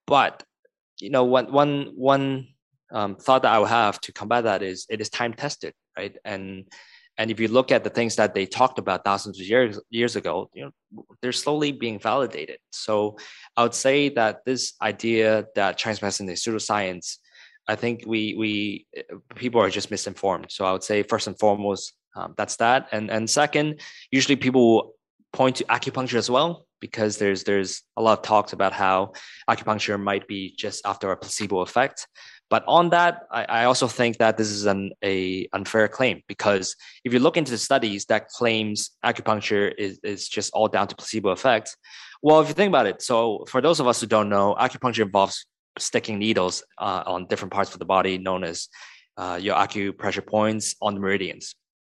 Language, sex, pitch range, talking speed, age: English, male, 100-130 Hz, 195 wpm, 20-39